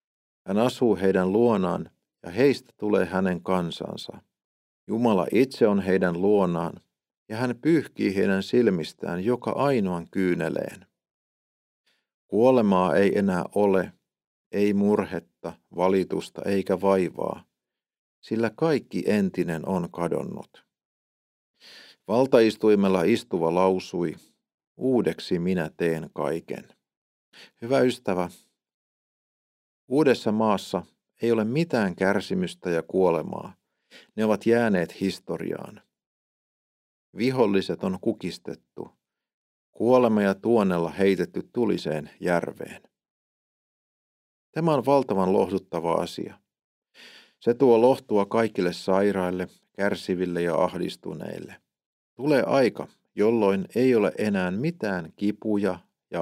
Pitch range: 90-110 Hz